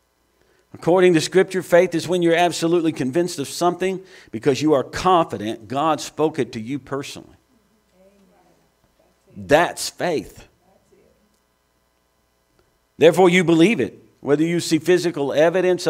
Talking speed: 120 wpm